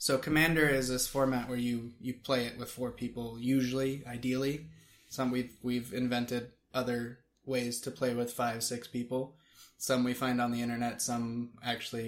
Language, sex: English, male